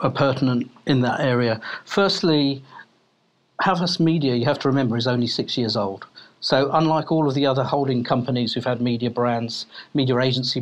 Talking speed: 175 wpm